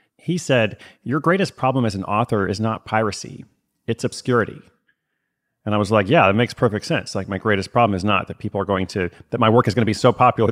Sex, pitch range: male, 95-115 Hz